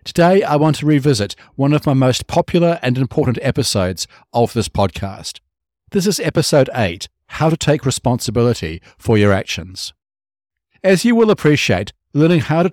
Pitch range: 95-150 Hz